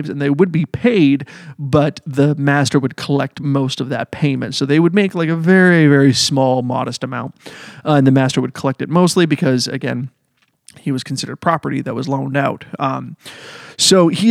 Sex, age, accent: male, 30-49, American